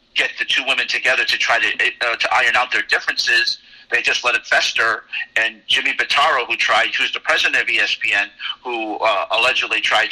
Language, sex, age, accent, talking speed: English, male, 50-69, American, 195 wpm